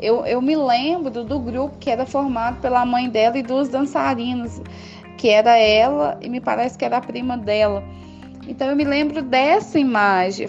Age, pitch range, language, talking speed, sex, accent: 20-39, 215-275 Hz, Portuguese, 185 wpm, female, Brazilian